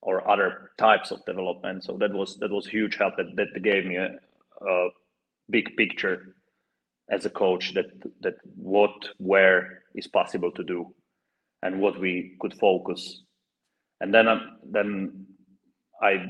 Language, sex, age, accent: English, male, 30-49, Finnish